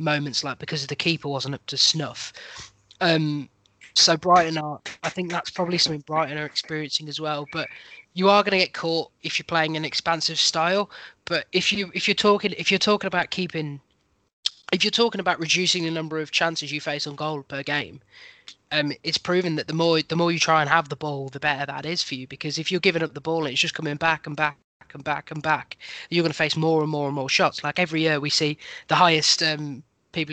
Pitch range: 145-165 Hz